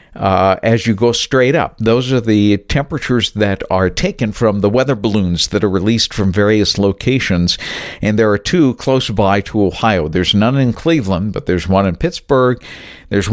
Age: 50-69